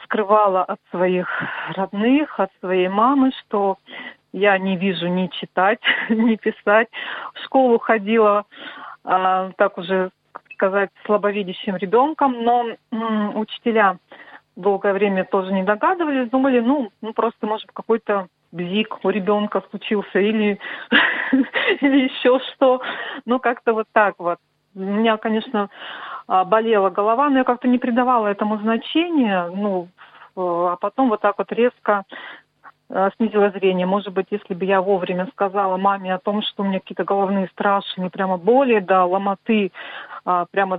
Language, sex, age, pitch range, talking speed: Russian, female, 40-59, 190-230 Hz, 135 wpm